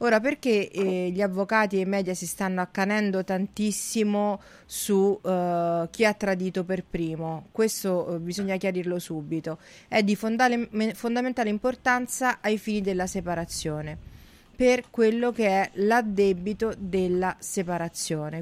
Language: Italian